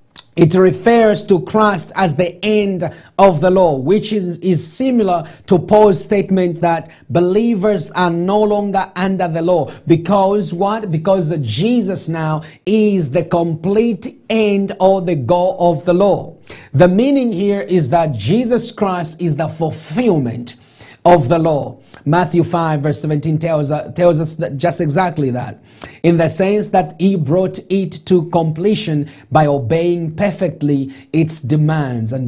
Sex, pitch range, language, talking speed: male, 140-185 Hz, English, 150 wpm